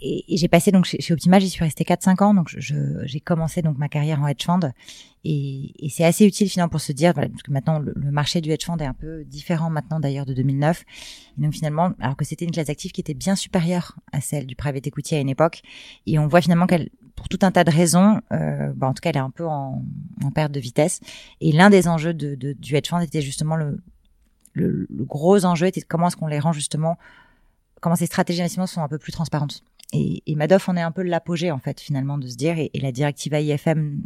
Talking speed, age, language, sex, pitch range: 260 wpm, 30-49, French, female, 145-175 Hz